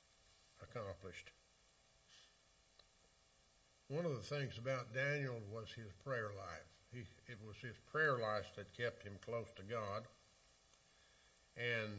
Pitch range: 95-130 Hz